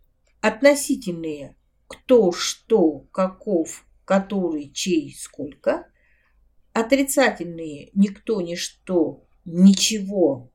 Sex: female